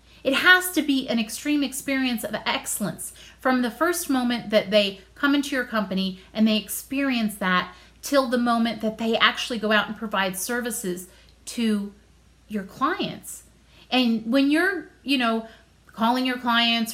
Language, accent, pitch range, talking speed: English, American, 210-270 Hz, 160 wpm